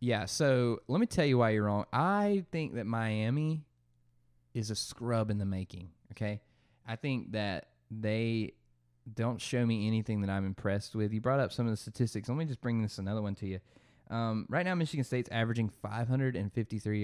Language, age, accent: English, 20-39, American